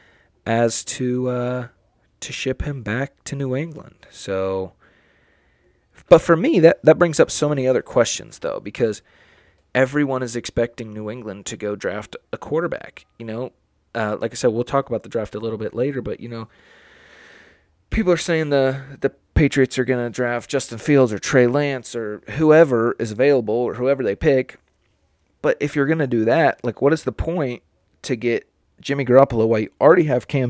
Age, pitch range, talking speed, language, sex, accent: 30-49, 100-135 Hz, 190 wpm, English, male, American